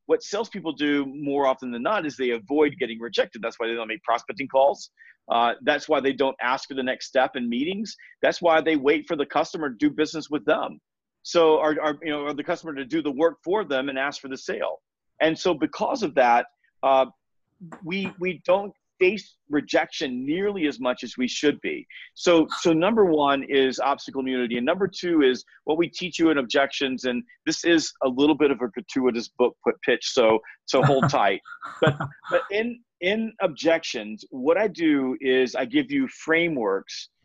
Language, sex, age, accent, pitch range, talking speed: Portuguese, male, 40-59, American, 130-180 Hz, 200 wpm